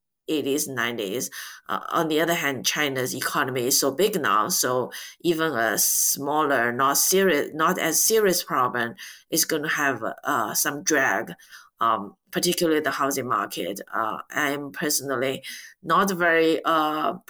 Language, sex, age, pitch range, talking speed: English, female, 30-49, 150-195 Hz, 140 wpm